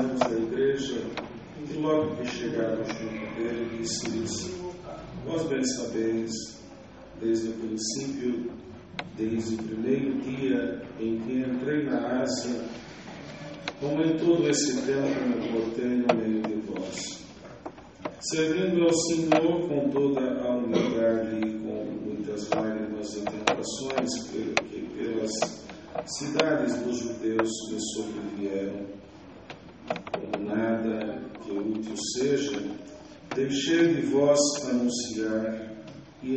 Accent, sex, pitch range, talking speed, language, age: Brazilian, male, 110-140 Hz, 105 wpm, English, 40-59